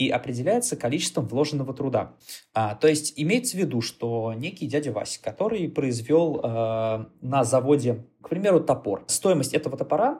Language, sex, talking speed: Russian, male, 155 wpm